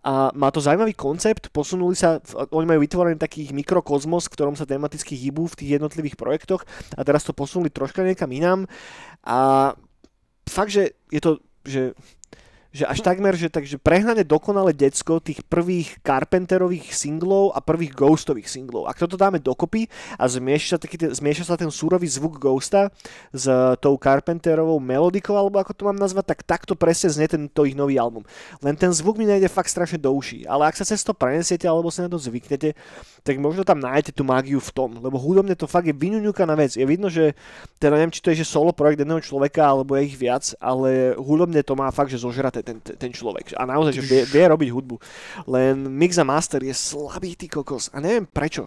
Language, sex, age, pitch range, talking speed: Slovak, male, 20-39, 135-175 Hz, 195 wpm